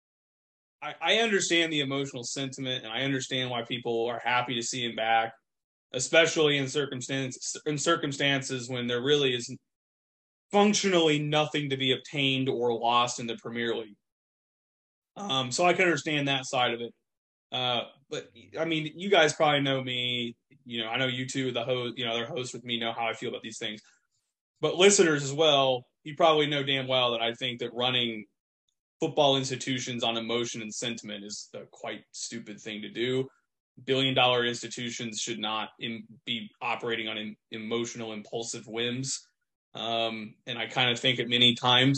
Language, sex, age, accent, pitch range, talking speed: English, male, 20-39, American, 115-135 Hz, 175 wpm